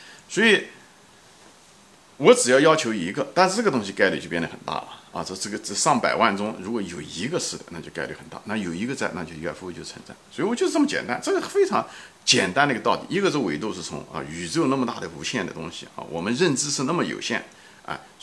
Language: Chinese